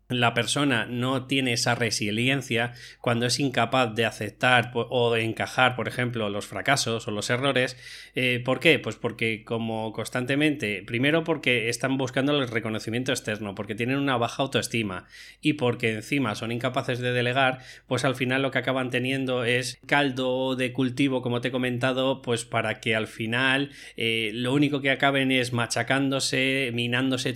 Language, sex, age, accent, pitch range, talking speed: Spanish, male, 20-39, Spanish, 115-135 Hz, 160 wpm